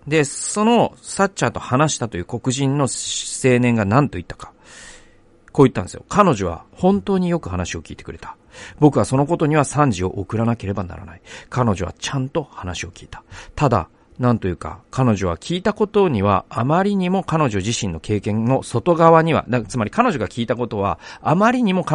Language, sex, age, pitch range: Japanese, male, 40-59, 100-155 Hz